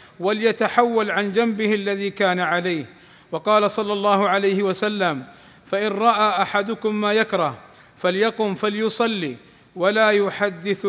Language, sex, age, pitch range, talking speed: Arabic, male, 50-69, 185-220 Hz, 110 wpm